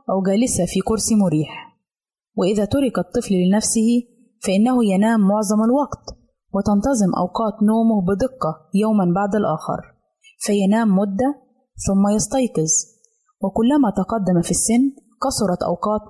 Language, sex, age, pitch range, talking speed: Arabic, female, 20-39, 185-230 Hz, 110 wpm